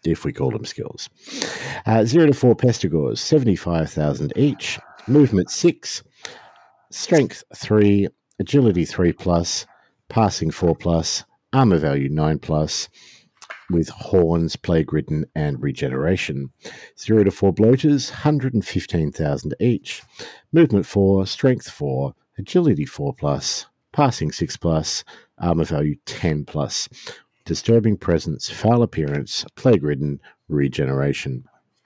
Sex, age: male, 50-69